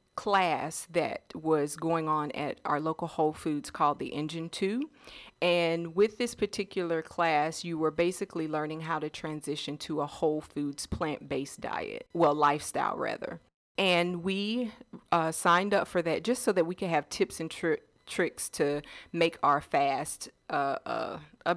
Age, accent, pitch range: 40-59, American, 150-185 Hz